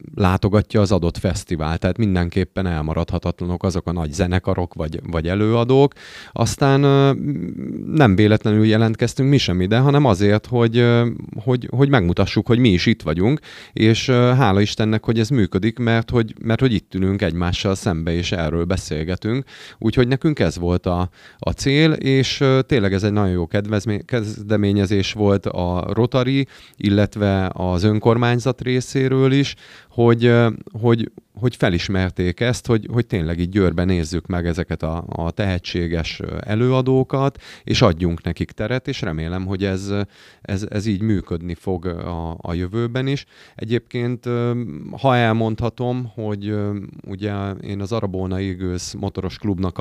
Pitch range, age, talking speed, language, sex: 90-115 Hz, 30-49, 140 wpm, Hungarian, male